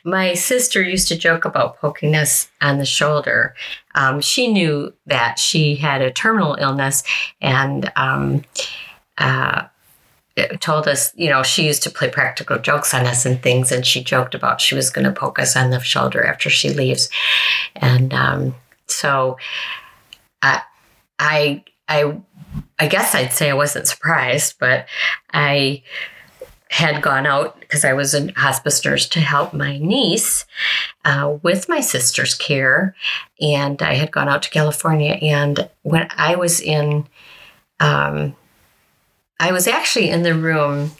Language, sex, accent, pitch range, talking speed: English, female, American, 135-165 Hz, 155 wpm